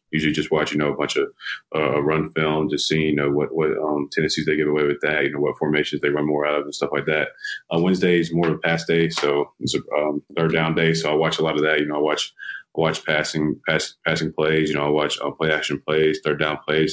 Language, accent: English, American